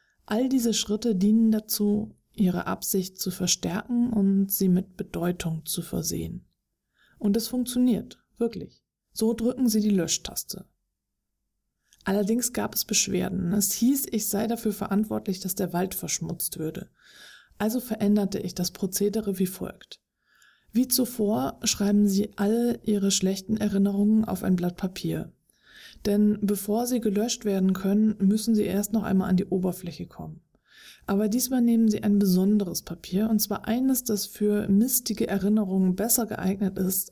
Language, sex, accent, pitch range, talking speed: German, female, German, 190-220 Hz, 145 wpm